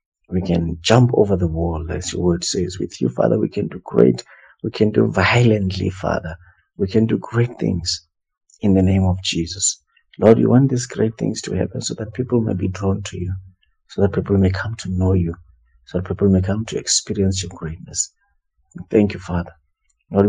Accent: South African